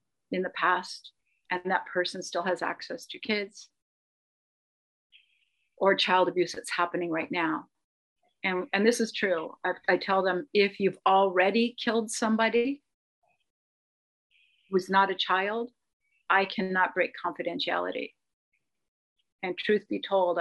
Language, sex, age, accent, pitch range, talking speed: English, female, 40-59, American, 185-220 Hz, 130 wpm